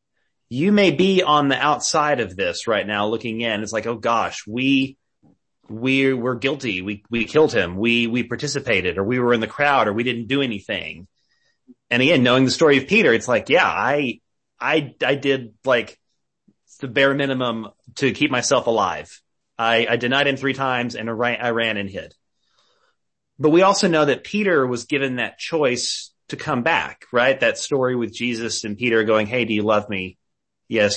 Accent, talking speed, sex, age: American, 195 wpm, male, 30-49